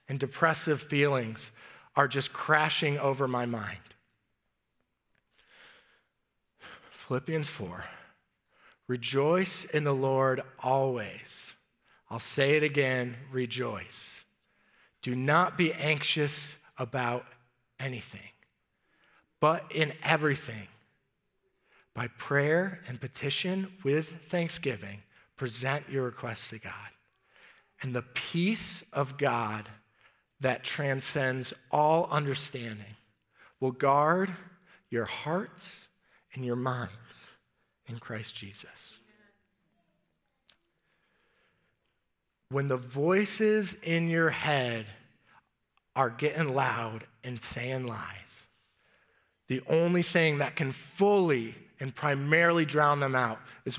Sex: male